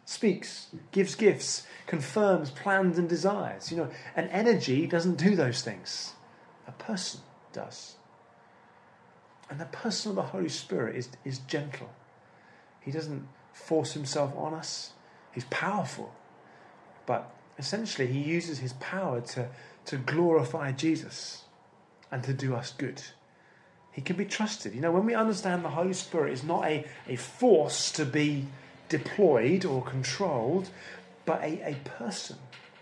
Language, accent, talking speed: English, British, 140 wpm